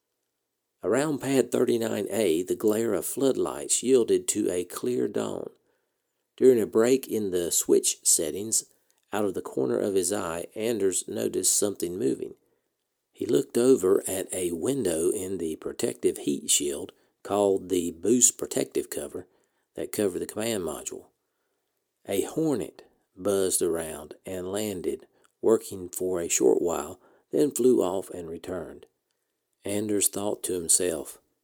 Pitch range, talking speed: 360-435 Hz, 135 wpm